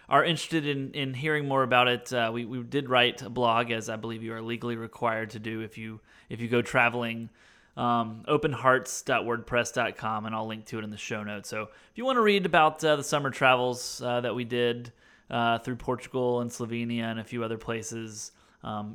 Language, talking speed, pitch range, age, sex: English, 210 wpm, 115-130 Hz, 20-39, male